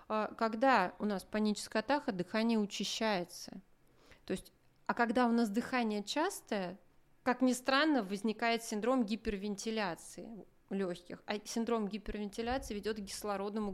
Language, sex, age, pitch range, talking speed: Russian, female, 30-49, 200-250 Hz, 115 wpm